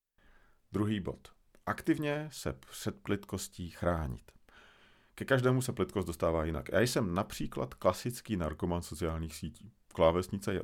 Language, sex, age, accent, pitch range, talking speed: Czech, male, 50-69, native, 80-105 Hz, 125 wpm